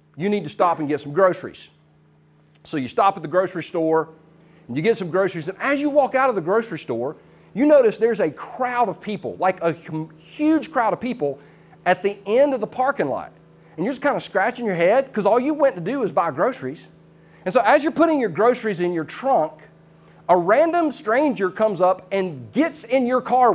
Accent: American